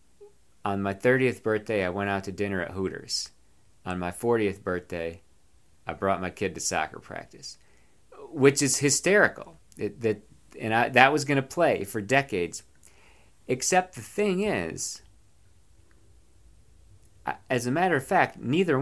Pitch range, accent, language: 90-120 Hz, American, English